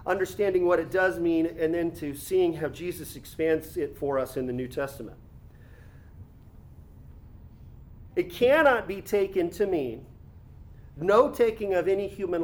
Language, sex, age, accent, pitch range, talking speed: English, male, 40-59, American, 155-220 Hz, 145 wpm